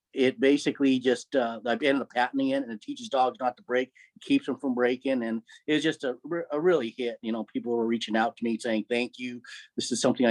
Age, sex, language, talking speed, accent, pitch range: 30-49, male, English, 245 wpm, American, 115-135 Hz